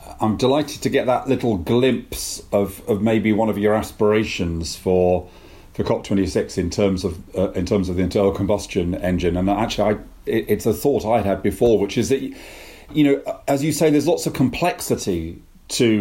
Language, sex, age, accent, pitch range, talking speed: English, male, 40-59, British, 95-130 Hz, 190 wpm